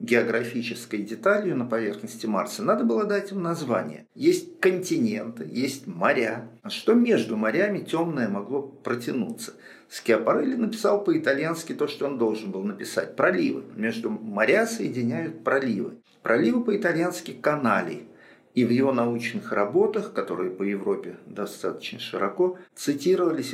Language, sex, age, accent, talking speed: Russian, male, 50-69, native, 125 wpm